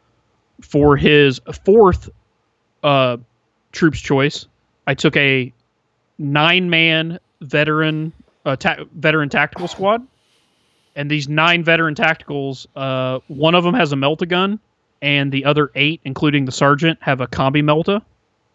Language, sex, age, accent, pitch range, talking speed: English, male, 30-49, American, 130-160 Hz, 130 wpm